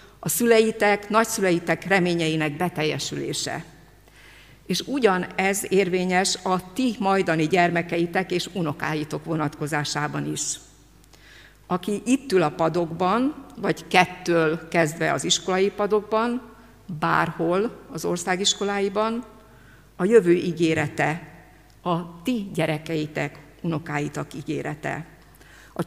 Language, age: Hungarian, 50-69